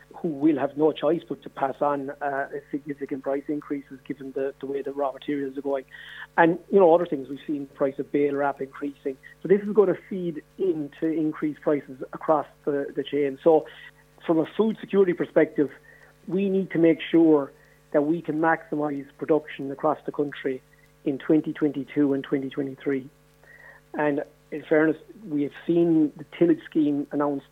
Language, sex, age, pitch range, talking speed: English, male, 40-59, 145-160 Hz, 180 wpm